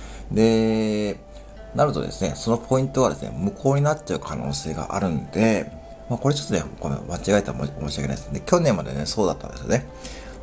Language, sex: Japanese, male